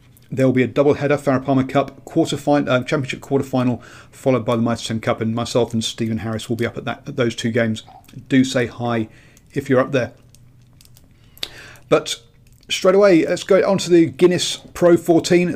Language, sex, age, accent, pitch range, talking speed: English, male, 40-59, British, 120-140 Hz, 190 wpm